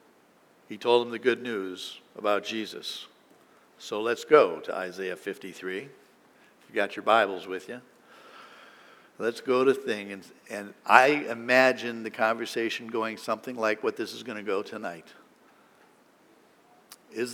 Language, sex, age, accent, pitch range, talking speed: English, male, 60-79, American, 115-140 Hz, 140 wpm